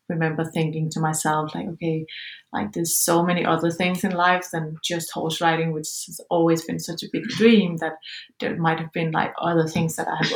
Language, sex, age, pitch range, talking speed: English, female, 30-49, 160-195 Hz, 215 wpm